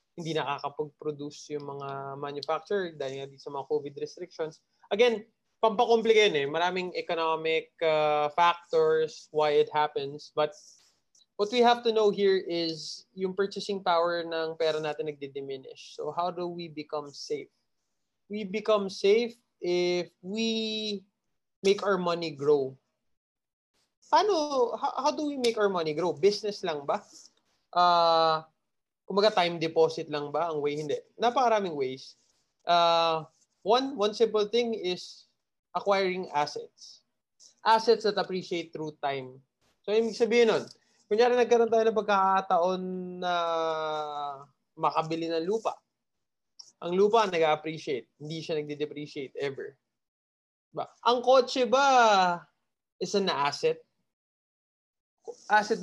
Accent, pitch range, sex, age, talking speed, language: Filipino, 155-220 Hz, male, 20-39, 125 wpm, English